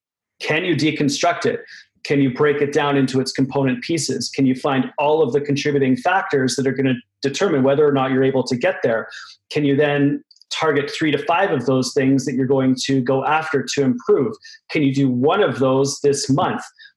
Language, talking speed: English, 210 wpm